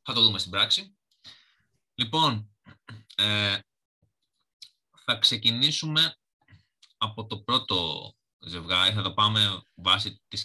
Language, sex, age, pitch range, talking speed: Greek, male, 20-39, 95-135 Hz, 105 wpm